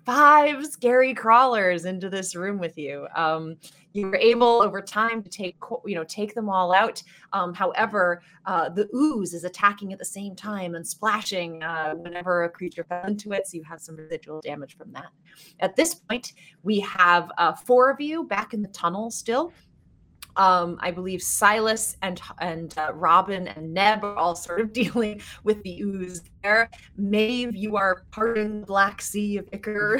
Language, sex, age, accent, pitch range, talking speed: English, female, 30-49, American, 175-215 Hz, 180 wpm